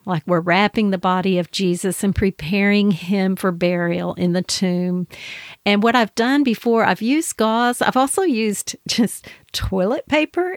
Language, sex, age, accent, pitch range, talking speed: English, female, 50-69, American, 180-220 Hz, 165 wpm